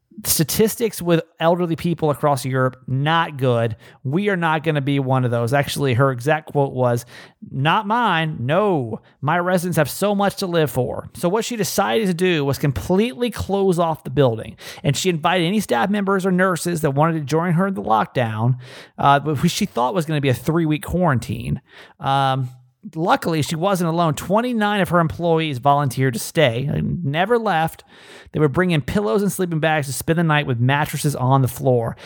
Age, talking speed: 30-49, 195 wpm